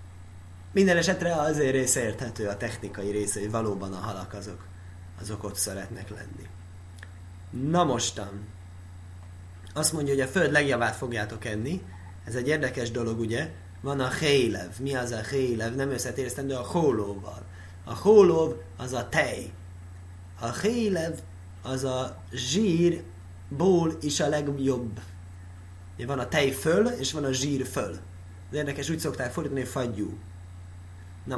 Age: 30-49